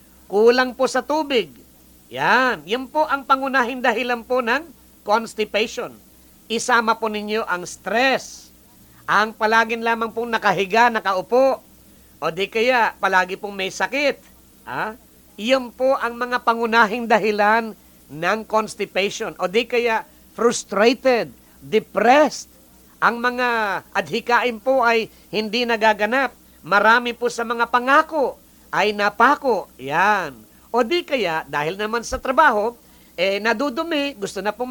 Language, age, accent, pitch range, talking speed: English, 50-69, Filipino, 195-245 Hz, 125 wpm